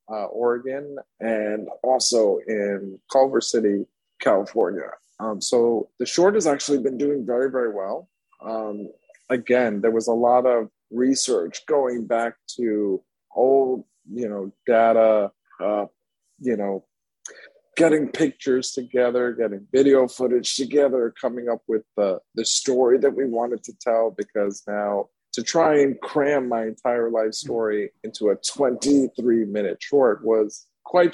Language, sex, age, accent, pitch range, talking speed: English, male, 40-59, American, 110-135 Hz, 140 wpm